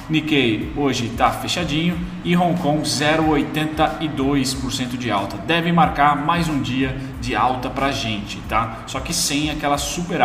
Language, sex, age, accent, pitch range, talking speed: Portuguese, male, 20-39, Brazilian, 125-145 Hz, 150 wpm